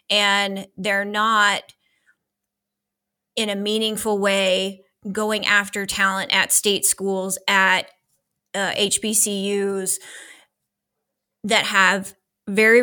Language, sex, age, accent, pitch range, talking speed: English, female, 20-39, American, 195-215 Hz, 90 wpm